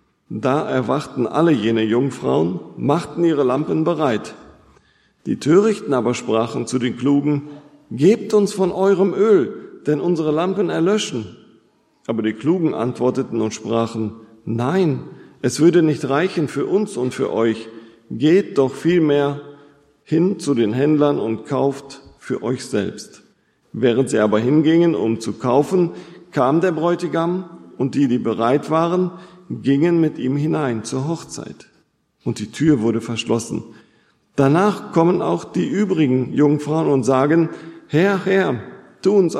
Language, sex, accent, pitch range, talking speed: German, male, German, 125-170 Hz, 140 wpm